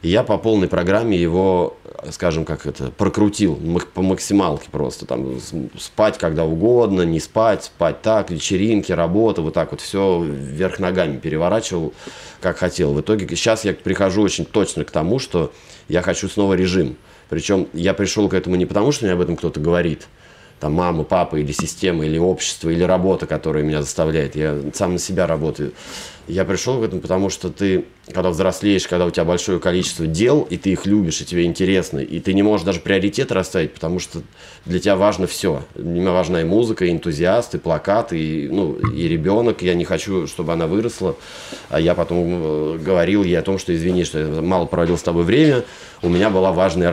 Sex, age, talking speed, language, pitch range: male, 30-49, 190 wpm, Russian, 85-95 Hz